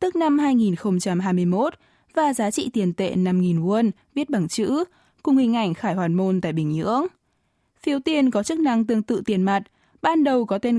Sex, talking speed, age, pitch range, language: female, 195 wpm, 20-39, 185-255 Hz, Vietnamese